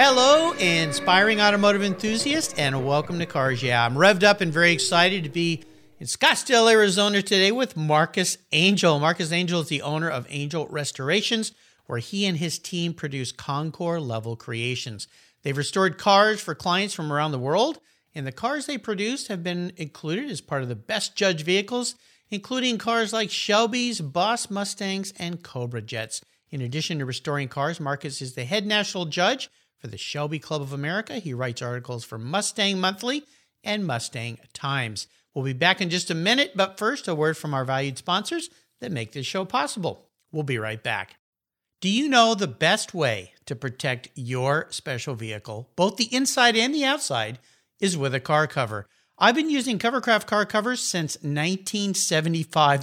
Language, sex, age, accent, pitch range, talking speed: English, male, 50-69, American, 140-205 Hz, 175 wpm